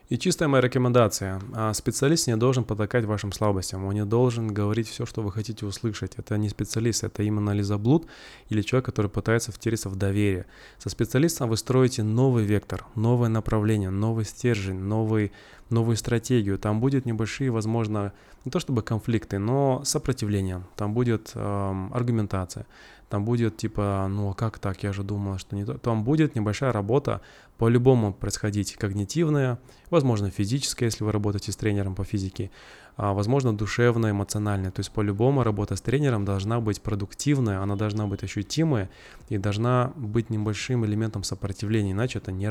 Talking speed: 160 wpm